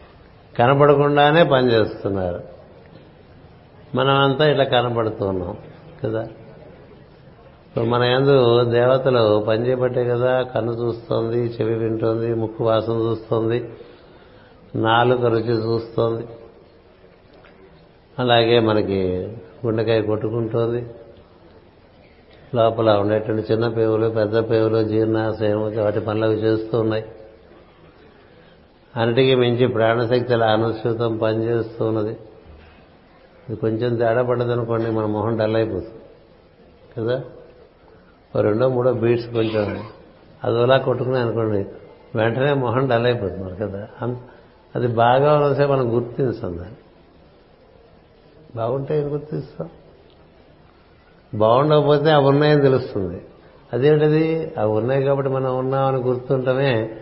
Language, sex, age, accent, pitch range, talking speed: Telugu, male, 60-79, native, 110-125 Hz, 90 wpm